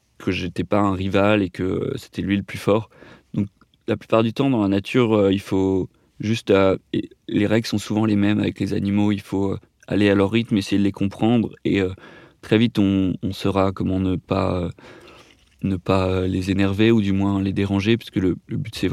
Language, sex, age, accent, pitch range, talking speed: French, male, 30-49, French, 95-105 Hz, 225 wpm